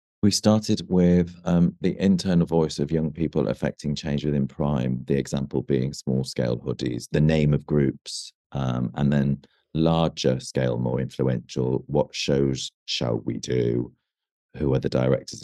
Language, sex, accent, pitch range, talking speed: English, male, British, 70-90 Hz, 155 wpm